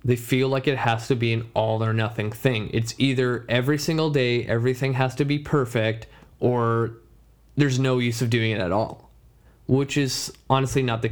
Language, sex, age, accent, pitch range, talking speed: English, male, 20-39, American, 115-135 Hz, 195 wpm